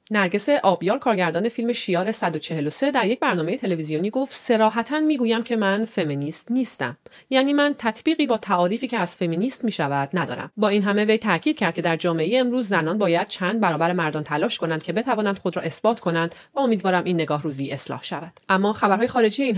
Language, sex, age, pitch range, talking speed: Persian, female, 40-59, 165-220 Hz, 195 wpm